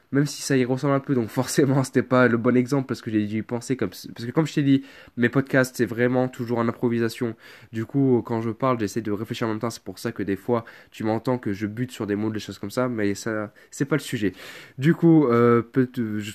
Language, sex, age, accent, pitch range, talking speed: French, male, 20-39, French, 105-130 Hz, 270 wpm